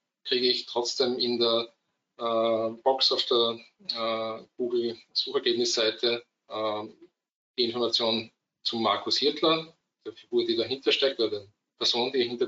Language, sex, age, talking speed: German, male, 20-39, 135 wpm